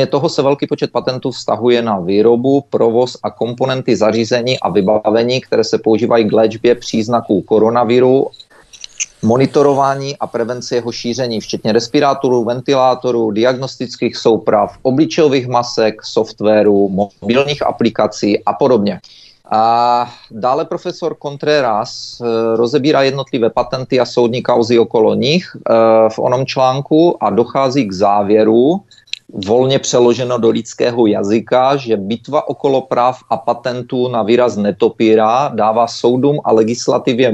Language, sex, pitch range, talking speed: Czech, male, 115-130 Hz, 125 wpm